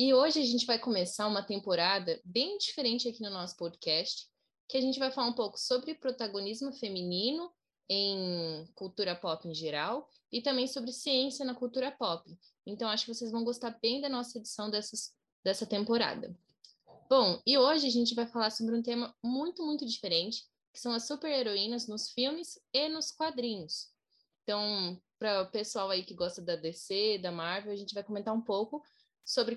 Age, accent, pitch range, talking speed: 10-29, Brazilian, 205-260 Hz, 185 wpm